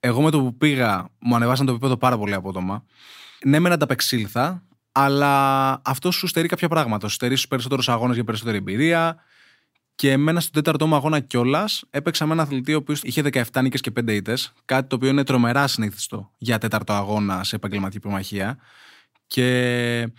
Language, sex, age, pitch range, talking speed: Greek, male, 20-39, 110-140 Hz, 180 wpm